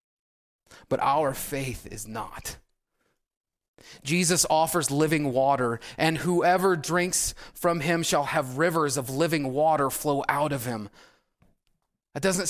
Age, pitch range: 30-49, 125-165 Hz